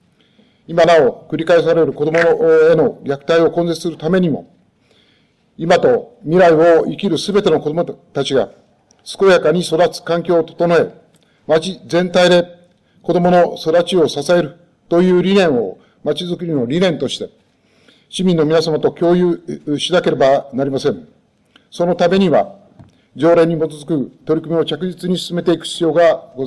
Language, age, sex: Japanese, 50-69, male